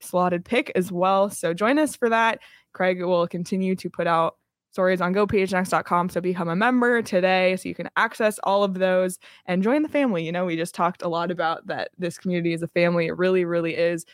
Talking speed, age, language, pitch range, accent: 220 wpm, 20-39, English, 175-205 Hz, American